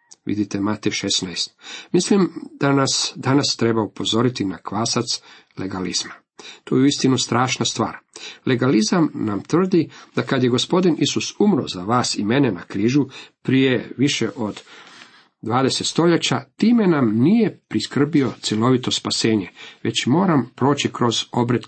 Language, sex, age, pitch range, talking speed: Croatian, male, 50-69, 115-165 Hz, 135 wpm